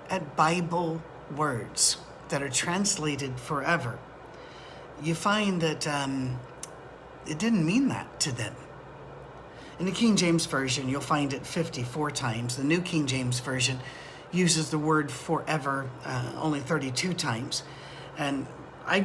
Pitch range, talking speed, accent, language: 140-170 Hz, 130 wpm, American, English